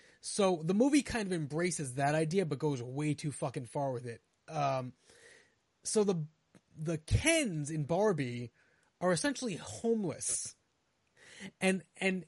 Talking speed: 135 wpm